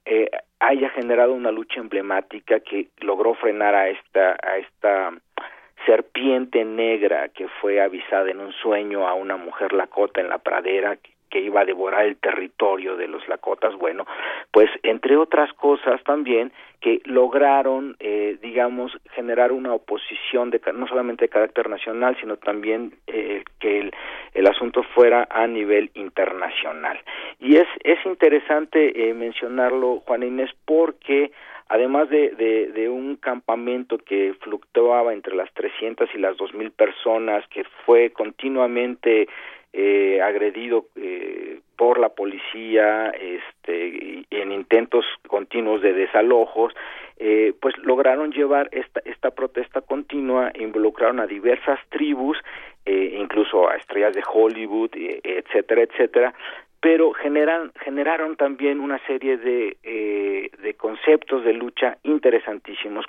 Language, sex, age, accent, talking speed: Spanish, male, 40-59, Mexican, 135 wpm